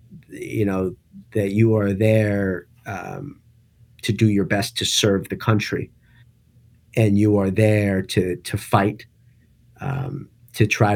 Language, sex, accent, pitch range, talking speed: English, male, American, 105-125 Hz, 135 wpm